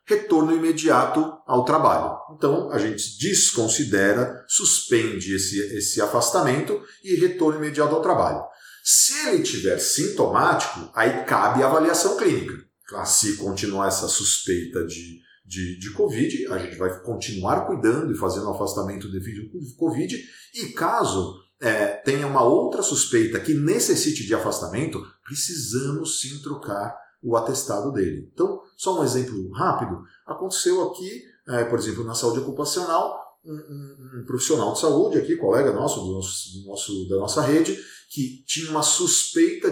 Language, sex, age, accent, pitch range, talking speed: Portuguese, male, 40-59, Brazilian, 110-180 Hz, 145 wpm